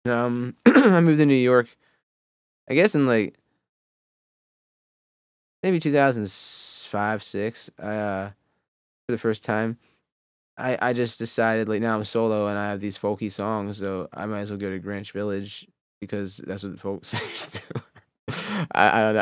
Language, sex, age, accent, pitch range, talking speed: English, male, 20-39, American, 95-110 Hz, 160 wpm